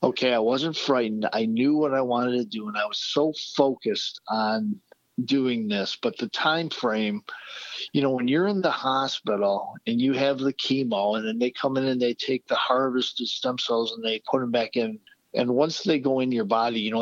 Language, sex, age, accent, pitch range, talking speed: English, male, 50-69, American, 115-145 Hz, 220 wpm